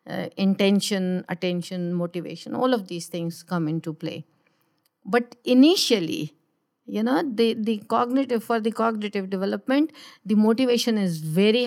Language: English